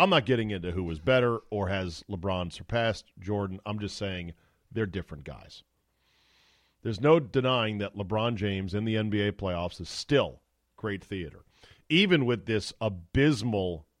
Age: 40-59